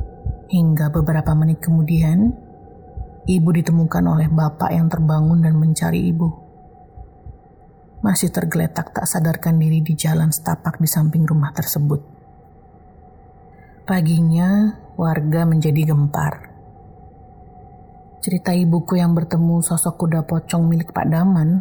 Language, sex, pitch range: Indonesian, female, 155-170 Hz